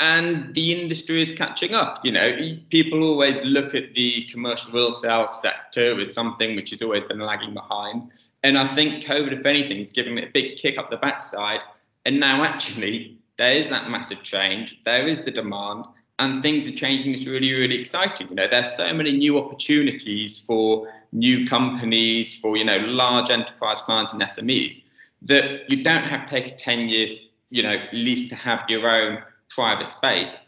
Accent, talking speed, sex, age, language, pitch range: British, 190 wpm, male, 20-39, English, 115-140 Hz